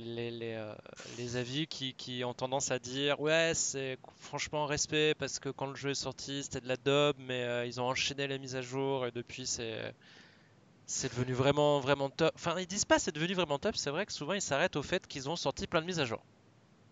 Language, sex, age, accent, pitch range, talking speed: French, male, 20-39, French, 120-150 Hz, 240 wpm